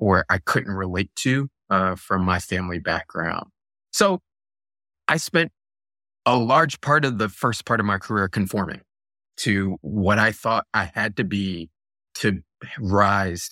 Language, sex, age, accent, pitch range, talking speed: English, male, 20-39, American, 95-115 Hz, 150 wpm